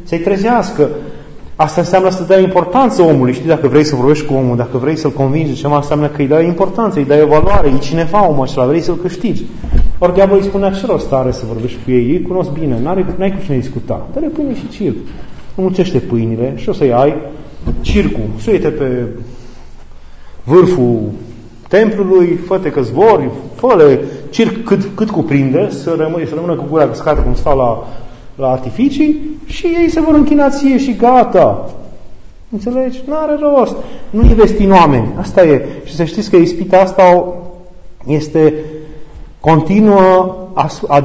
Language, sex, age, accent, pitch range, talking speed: Romanian, male, 30-49, native, 140-195 Hz, 165 wpm